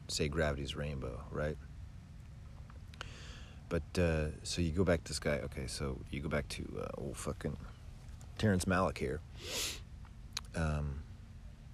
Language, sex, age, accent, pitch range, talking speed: English, male, 40-59, American, 75-90 Hz, 135 wpm